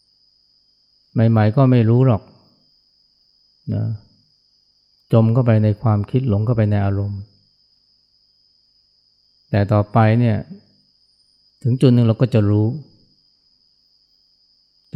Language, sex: Thai, male